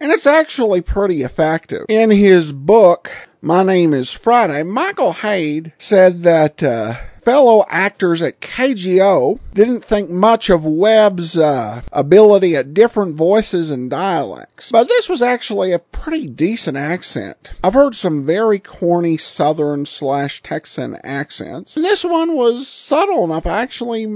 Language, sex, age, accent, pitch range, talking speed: English, male, 50-69, American, 145-220 Hz, 145 wpm